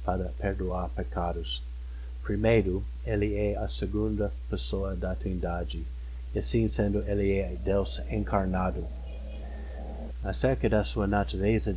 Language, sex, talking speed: Portuguese, male, 105 wpm